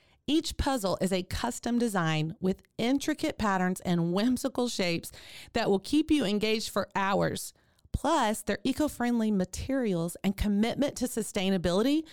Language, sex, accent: English, female, American